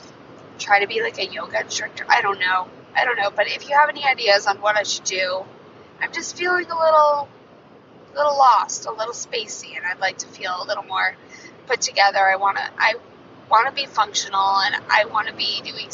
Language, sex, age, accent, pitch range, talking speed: English, female, 20-39, American, 205-280 Hz, 205 wpm